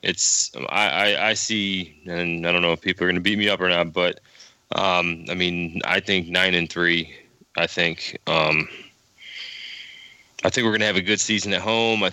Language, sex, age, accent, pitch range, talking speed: English, male, 20-39, American, 85-100 Hz, 215 wpm